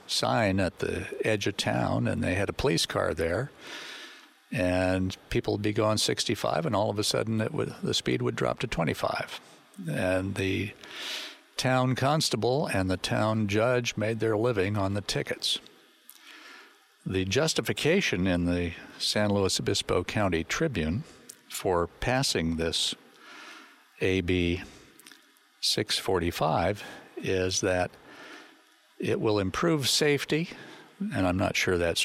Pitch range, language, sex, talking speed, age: 90-110 Hz, English, male, 130 wpm, 60-79